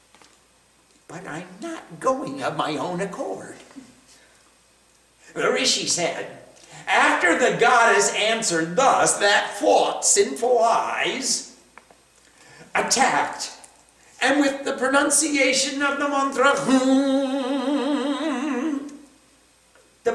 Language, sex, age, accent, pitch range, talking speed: English, male, 50-69, American, 240-290 Hz, 85 wpm